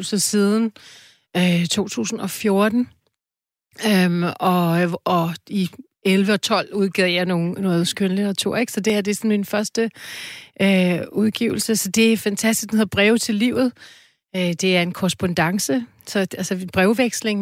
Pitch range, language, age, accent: 180-215 Hz, Danish, 30-49, native